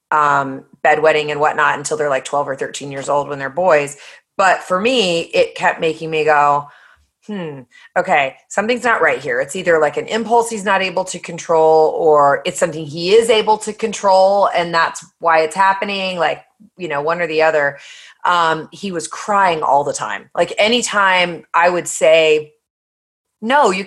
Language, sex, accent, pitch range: English, female, American, 165-240 Hz